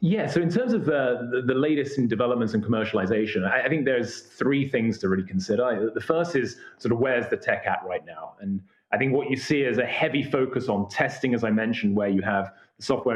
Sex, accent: male, British